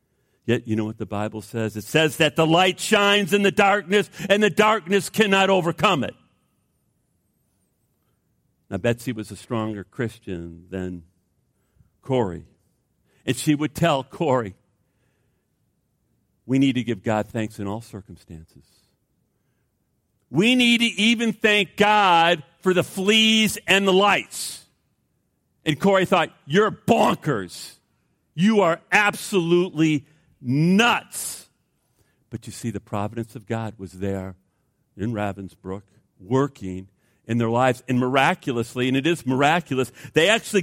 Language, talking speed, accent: English, 130 wpm, American